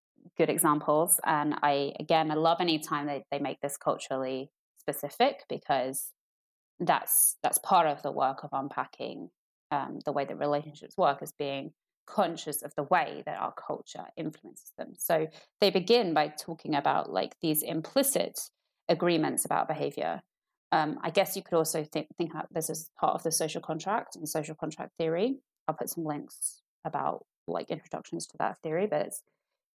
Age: 20-39